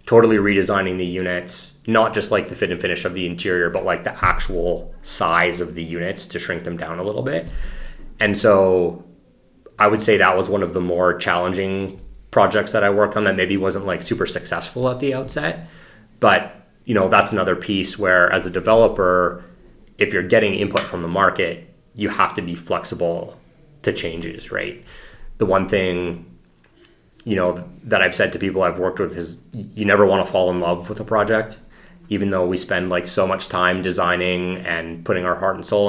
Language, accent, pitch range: English, American, 90-100 Hz